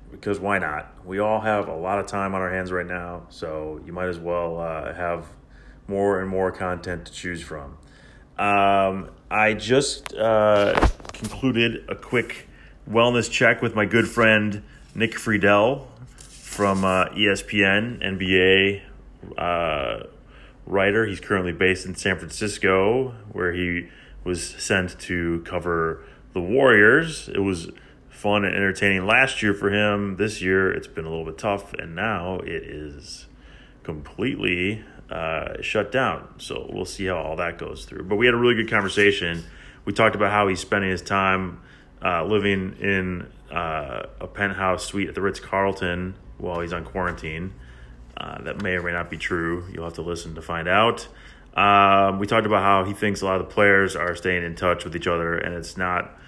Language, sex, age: English, male, 30-49